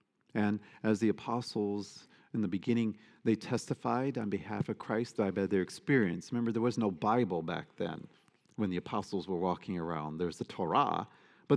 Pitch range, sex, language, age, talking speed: 105-125 Hz, male, English, 50-69, 170 wpm